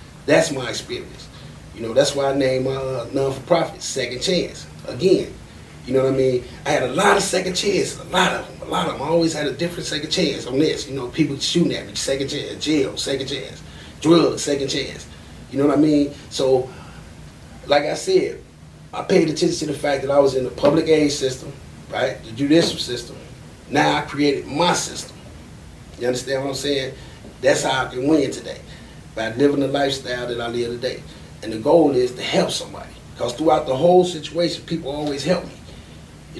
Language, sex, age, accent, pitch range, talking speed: English, male, 30-49, American, 130-160 Hz, 210 wpm